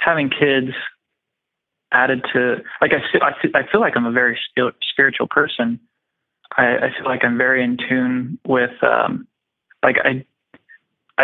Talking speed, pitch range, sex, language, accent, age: 145 wpm, 125-145 Hz, male, English, American, 30-49